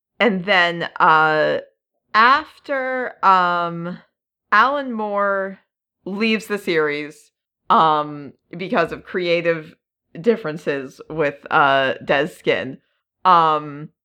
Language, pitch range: English, 155-220 Hz